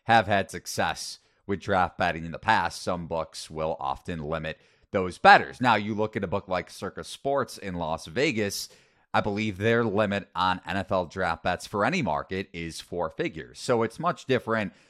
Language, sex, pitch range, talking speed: English, male, 95-130 Hz, 185 wpm